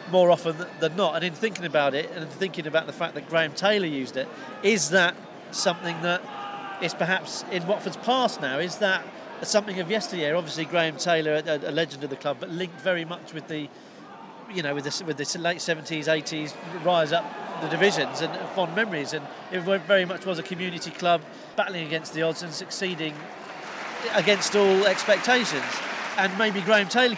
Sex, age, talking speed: male, 40-59, 190 wpm